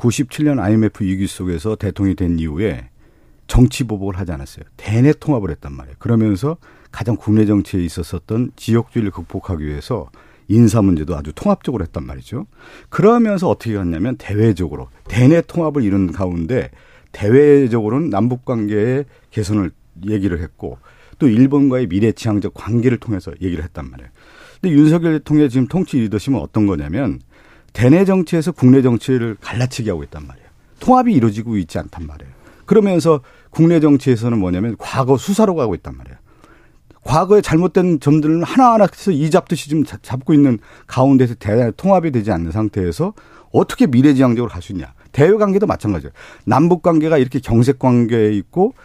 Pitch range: 100-155 Hz